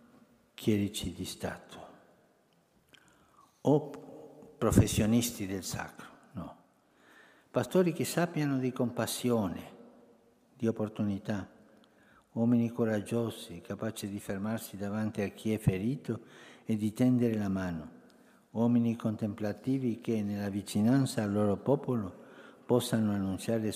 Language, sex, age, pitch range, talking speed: Italian, male, 60-79, 105-125 Hz, 100 wpm